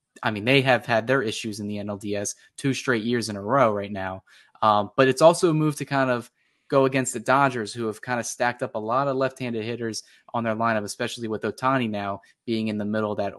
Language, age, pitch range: English, 10-29, 115-130 Hz